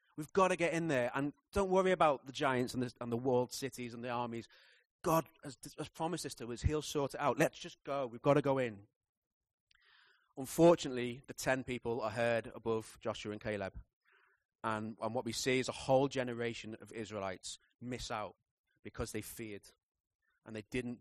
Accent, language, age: British, English, 30-49